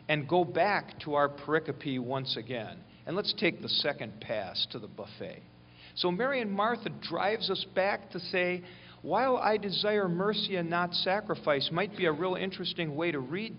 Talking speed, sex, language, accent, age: 180 wpm, male, English, American, 50-69